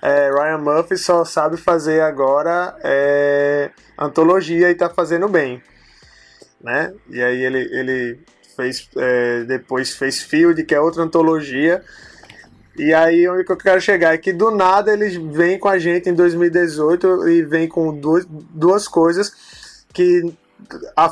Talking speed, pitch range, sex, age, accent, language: 150 wpm, 135-175 Hz, male, 20-39, Brazilian, Portuguese